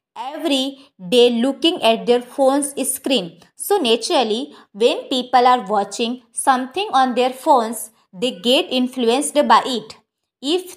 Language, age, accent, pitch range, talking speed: Hindi, 20-39, native, 230-300 Hz, 130 wpm